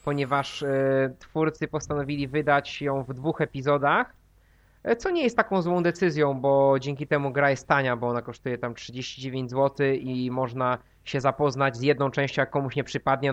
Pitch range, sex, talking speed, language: 135-175 Hz, male, 165 wpm, Polish